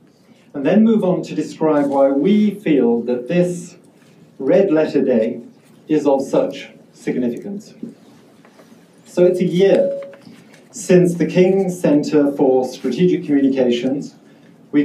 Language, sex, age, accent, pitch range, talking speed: English, male, 50-69, British, 150-215 Hz, 115 wpm